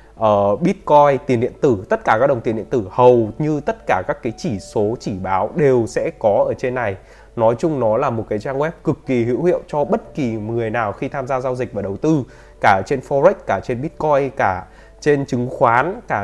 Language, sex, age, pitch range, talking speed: Vietnamese, male, 20-39, 110-145 Hz, 235 wpm